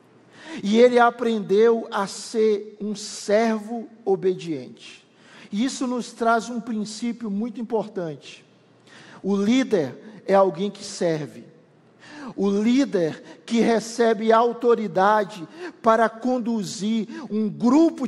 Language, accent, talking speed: Portuguese, Brazilian, 100 wpm